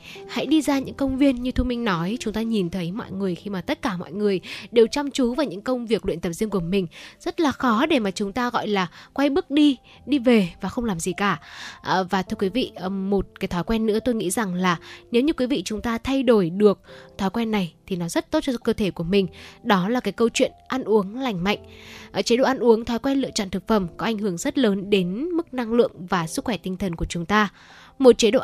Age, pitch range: 10-29, 195-245 Hz